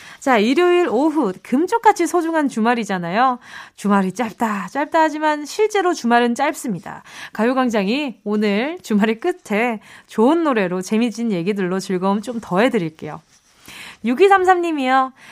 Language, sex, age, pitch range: Korean, female, 20-39, 205-310 Hz